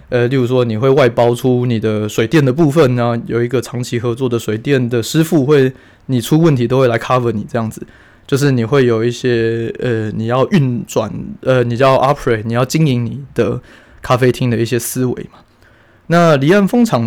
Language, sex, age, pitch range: Chinese, male, 20-39, 120-140 Hz